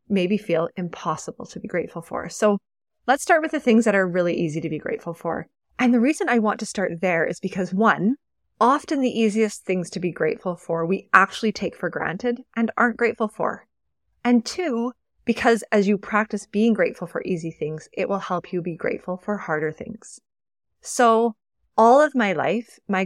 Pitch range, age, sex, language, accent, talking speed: 175-225 Hz, 20-39, female, English, American, 195 wpm